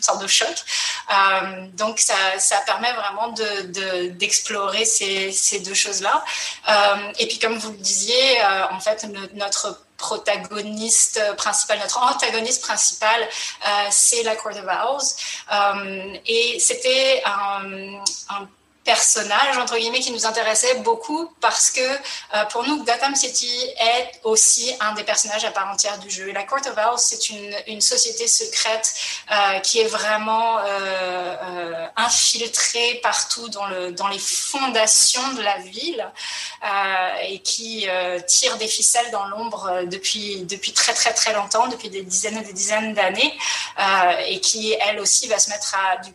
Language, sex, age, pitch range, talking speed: French, female, 30-49, 195-235 Hz, 165 wpm